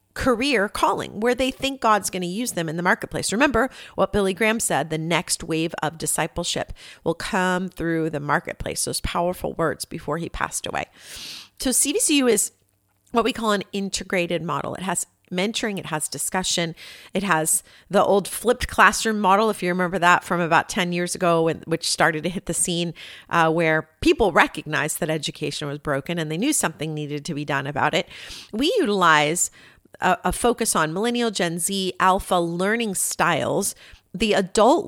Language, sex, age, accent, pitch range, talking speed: English, female, 40-59, American, 160-210 Hz, 180 wpm